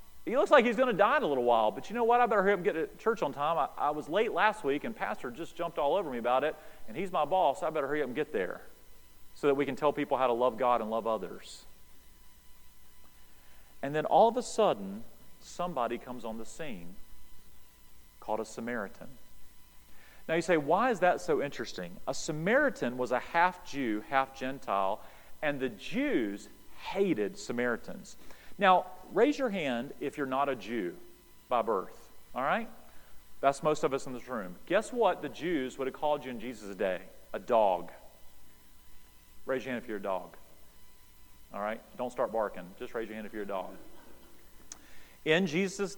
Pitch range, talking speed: 115-170 Hz, 200 wpm